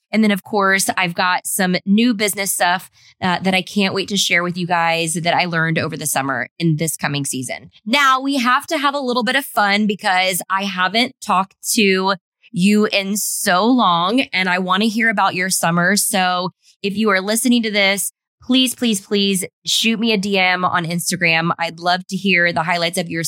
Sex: female